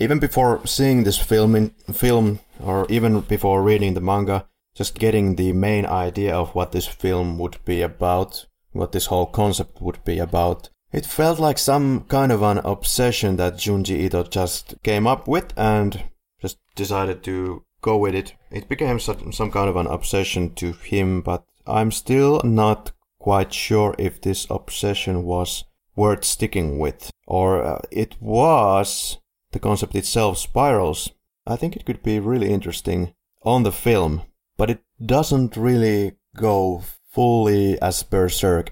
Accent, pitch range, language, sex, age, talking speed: Finnish, 90-110 Hz, English, male, 30-49, 155 wpm